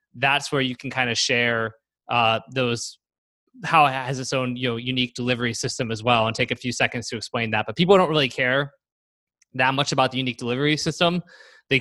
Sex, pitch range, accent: male, 120-150 Hz, American